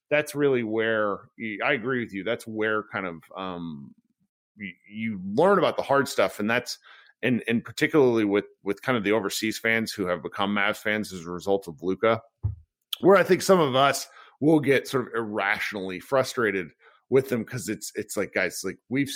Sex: male